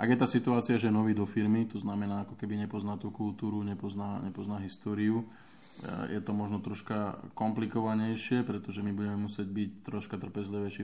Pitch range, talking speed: 100-105 Hz, 165 wpm